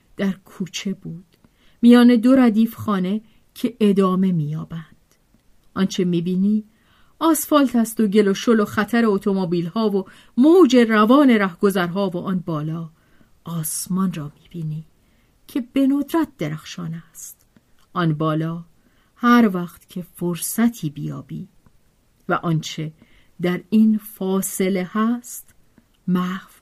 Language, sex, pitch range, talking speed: Persian, female, 170-235 Hz, 115 wpm